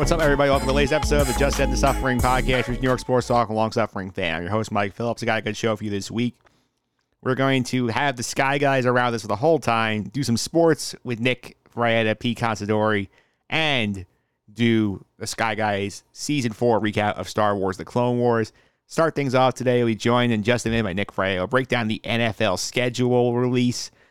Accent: American